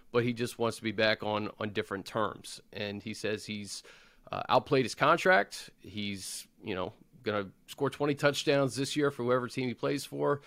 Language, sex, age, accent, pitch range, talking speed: English, male, 30-49, American, 110-140 Hz, 200 wpm